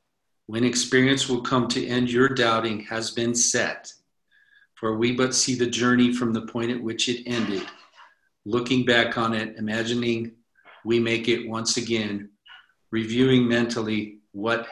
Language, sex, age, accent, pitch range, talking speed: English, male, 50-69, American, 115-125 Hz, 150 wpm